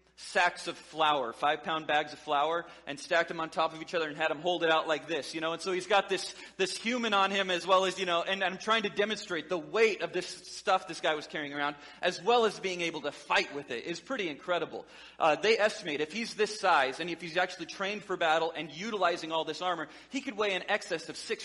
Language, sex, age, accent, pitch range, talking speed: English, male, 30-49, American, 160-205 Hz, 260 wpm